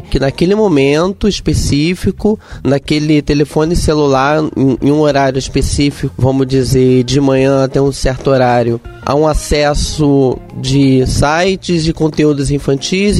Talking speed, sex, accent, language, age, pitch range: 125 wpm, male, Brazilian, Portuguese, 20-39, 135-170 Hz